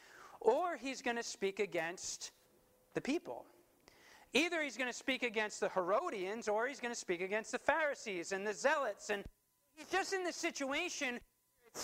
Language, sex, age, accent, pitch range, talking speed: English, male, 40-59, American, 170-270 Hz, 170 wpm